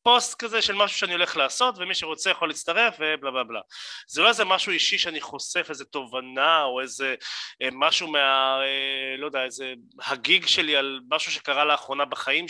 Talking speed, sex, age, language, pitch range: 180 wpm, male, 30-49, Hebrew, 140-190 Hz